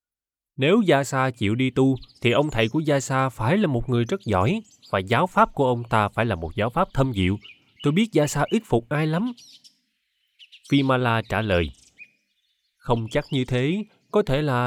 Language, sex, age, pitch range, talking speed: Vietnamese, male, 20-39, 105-150 Hz, 200 wpm